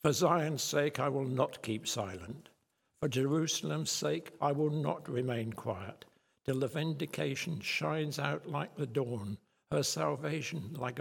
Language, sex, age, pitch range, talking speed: English, male, 60-79, 125-150 Hz, 145 wpm